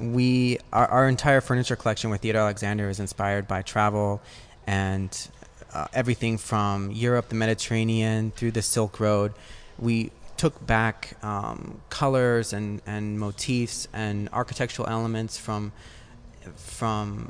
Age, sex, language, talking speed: 20-39, male, English, 130 wpm